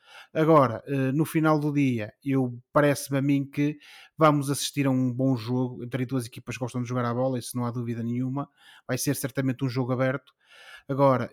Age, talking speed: 20-39, 195 wpm